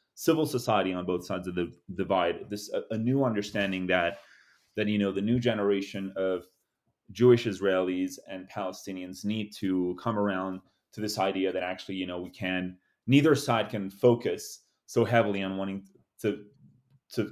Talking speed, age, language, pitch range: 165 wpm, 30-49, English, 95-115 Hz